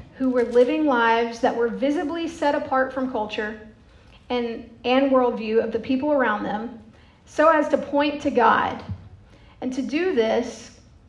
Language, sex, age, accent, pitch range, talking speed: English, female, 40-59, American, 235-275 Hz, 155 wpm